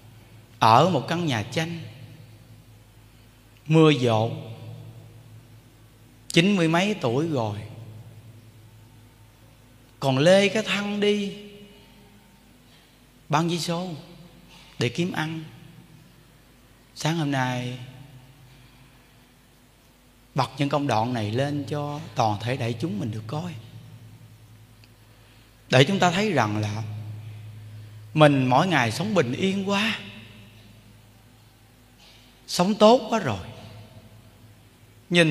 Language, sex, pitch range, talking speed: Vietnamese, male, 115-155 Hz, 100 wpm